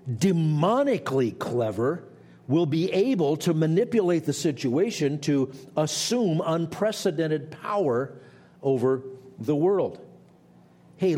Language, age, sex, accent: English, 50-69, male, American